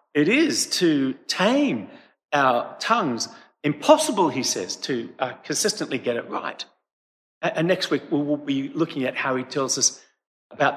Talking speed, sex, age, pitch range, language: 160 wpm, male, 50-69, 130-180 Hz, English